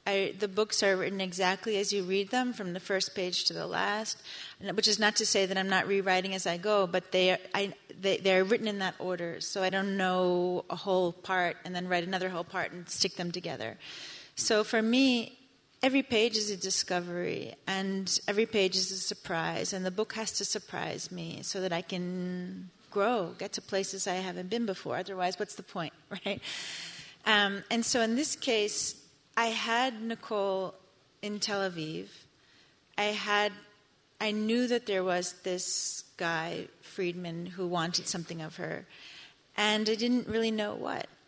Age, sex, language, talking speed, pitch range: 30-49, female, Hebrew, 185 wpm, 180-215 Hz